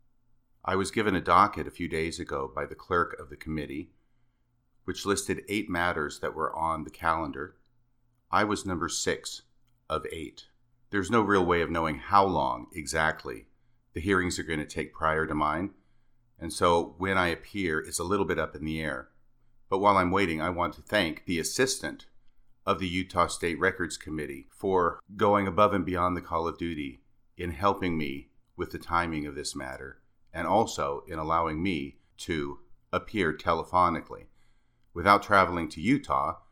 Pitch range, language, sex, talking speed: 85-120 Hz, English, male, 175 wpm